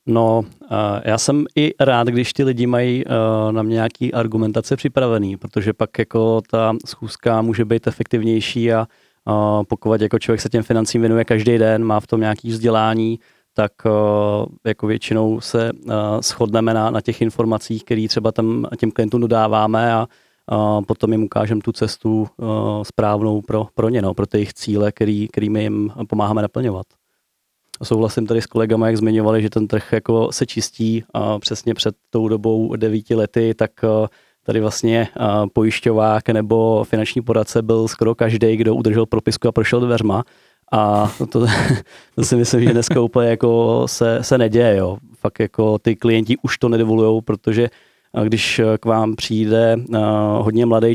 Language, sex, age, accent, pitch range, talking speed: Czech, male, 30-49, native, 110-115 Hz, 160 wpm